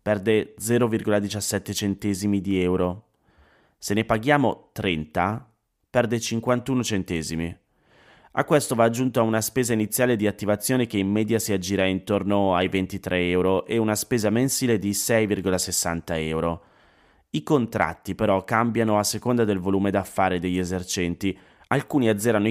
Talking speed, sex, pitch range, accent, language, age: 135 wpm, male, 95-115 Hz, native, Italian, 30-49